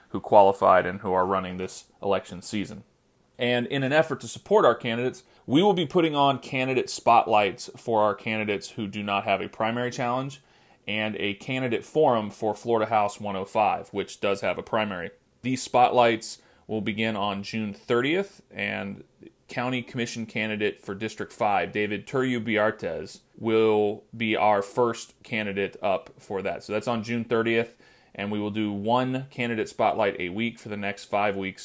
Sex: male